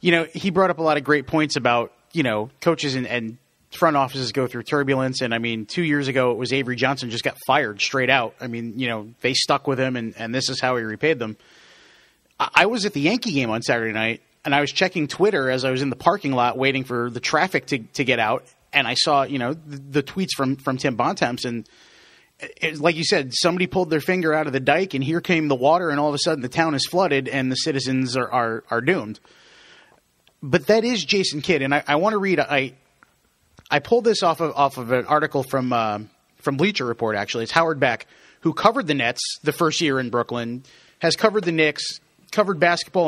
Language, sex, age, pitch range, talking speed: English, male, 30-49, 130-170 Hz, 240 wpm